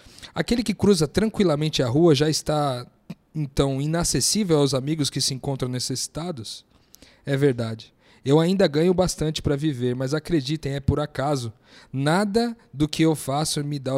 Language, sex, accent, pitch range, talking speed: Portuguese, male, Brazilian, 130-165 Hz, 155 wpm